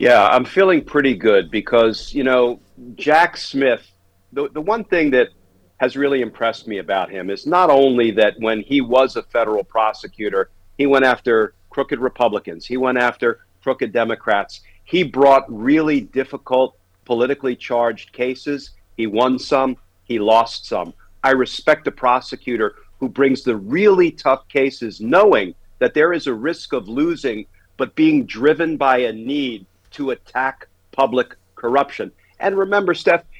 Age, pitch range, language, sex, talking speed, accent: 50-69, 115-150 Hz, English, male, 155 wpm, American